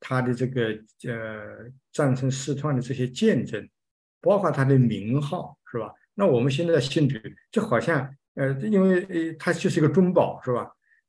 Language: Chinese